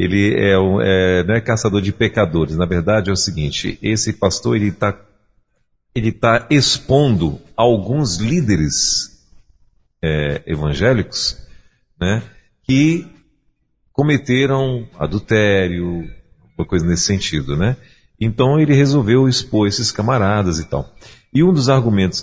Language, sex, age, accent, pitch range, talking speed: Portuguese, male, 50-69, Brazilian, 95-130 Hz, 125 wpm